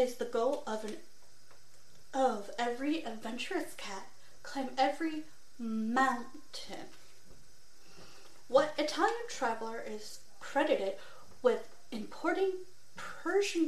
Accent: American